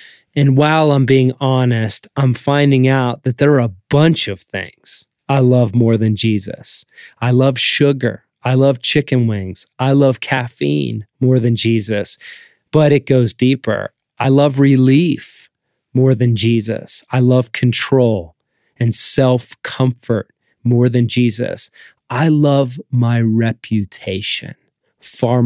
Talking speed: 130 wpm